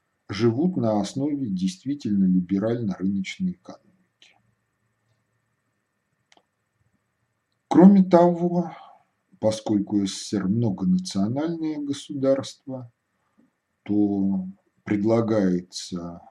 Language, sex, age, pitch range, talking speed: Russian, male, 50-69, 95-160 Hz, 50 wpm